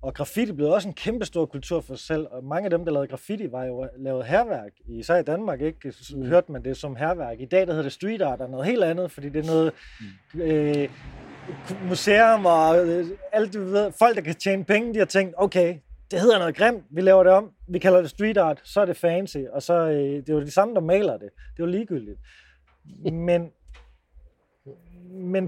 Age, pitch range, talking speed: 20-39, 145-190 Hz, 230 wpm